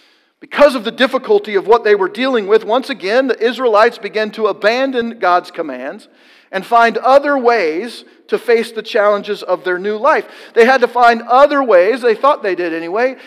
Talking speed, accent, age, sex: 190 wpm, American, 50-69, male